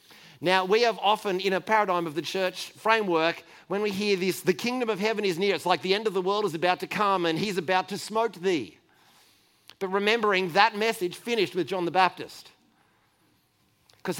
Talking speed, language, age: 205 wpm, English, 40-59